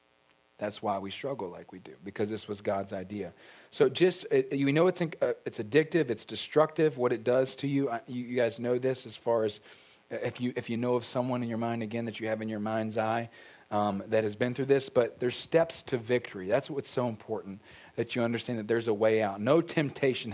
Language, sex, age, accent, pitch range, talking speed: English, male, 40-59, American, 110-145 Hz, 225 wpm